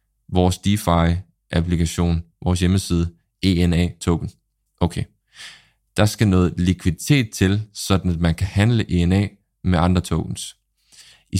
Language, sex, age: Danish, male, 20-39